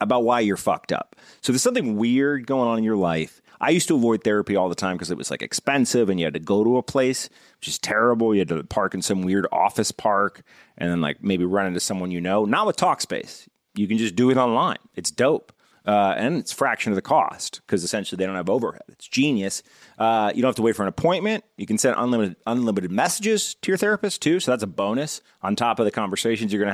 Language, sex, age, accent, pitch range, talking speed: English, male, 30-49, American, 100-130 Hz, 250 wpm